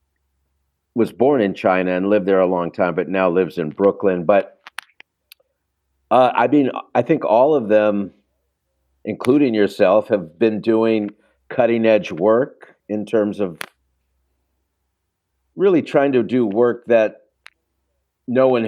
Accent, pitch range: American, 90-110 Hz